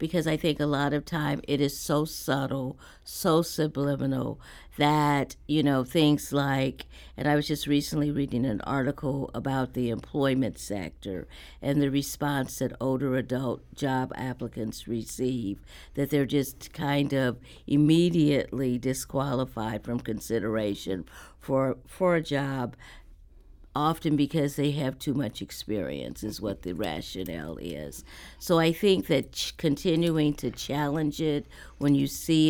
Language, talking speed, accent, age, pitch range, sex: English, 140 wpm, American, 60-79, 125-150 Hz, female